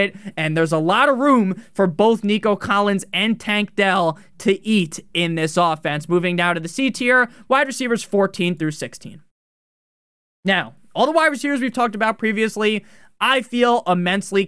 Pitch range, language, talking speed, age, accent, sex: 175-230 Hz, English, 170 wpm, 20-39, American, male